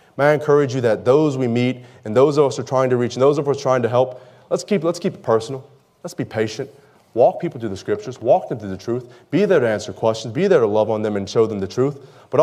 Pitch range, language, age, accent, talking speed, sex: 110-145 Hz, English, 30-49, American, 300 wpm, male